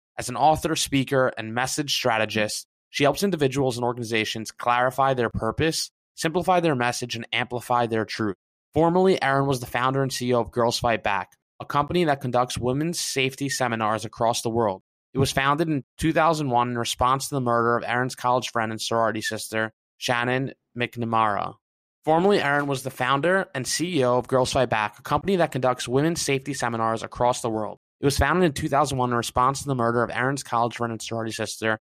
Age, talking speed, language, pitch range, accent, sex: 20-39, 190 wpm, English, 115-140 Hz, American, male